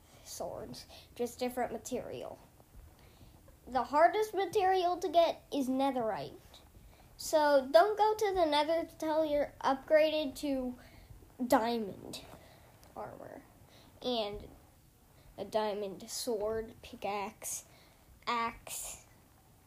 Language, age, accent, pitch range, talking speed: English, 10-29, American, 225-305 Hz, 90 wpm